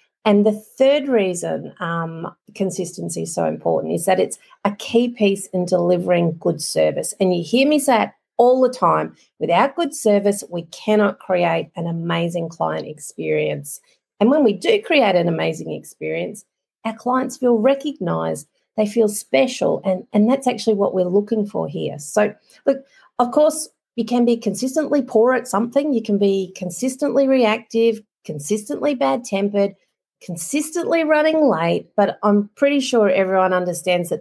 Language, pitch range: English, 170-240 Hz